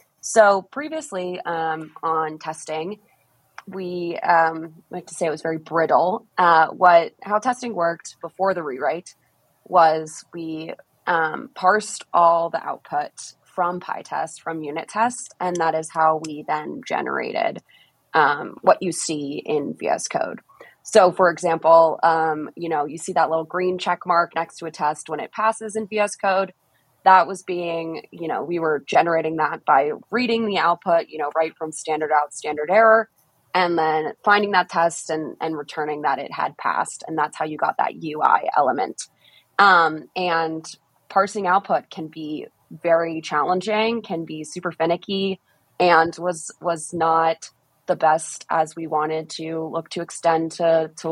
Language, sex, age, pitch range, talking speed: English, female, 20-39, 160-185 Hz, 165 wpm